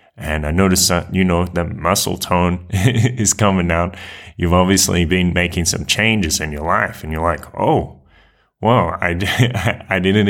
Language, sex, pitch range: English, male, 85-100 Hz